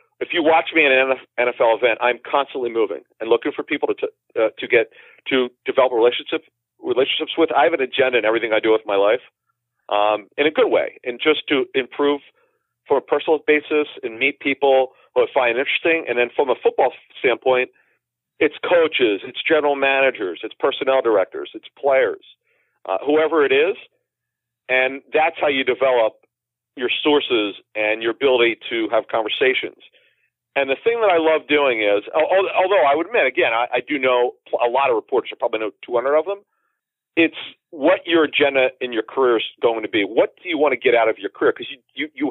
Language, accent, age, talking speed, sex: English, American, 40-59, 195 wpm, male